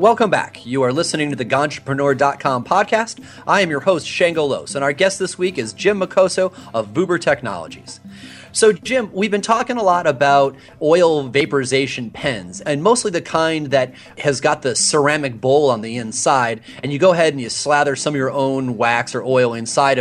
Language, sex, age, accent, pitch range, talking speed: English, male, 30-49, American, 125-170 Hz, 195 wpm